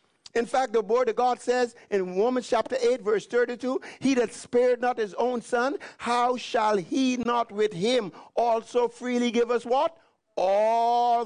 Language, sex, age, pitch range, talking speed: English, male, 50-69, 185-240 Hz, 170 wpm